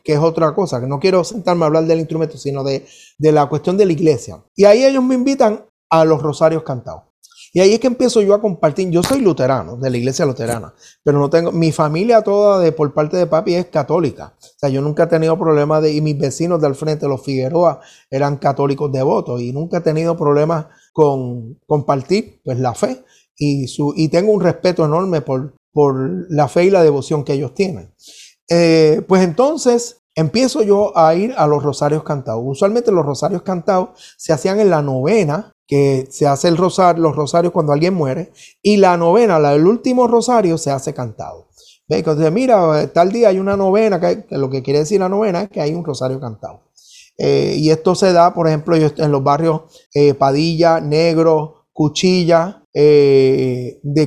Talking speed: 200 wpm